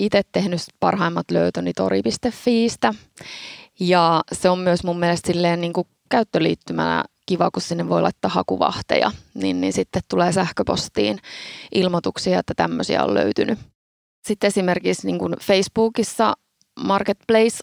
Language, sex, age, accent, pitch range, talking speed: Finnish, female, 20-39, native, 170-200 Hz, 125 wpm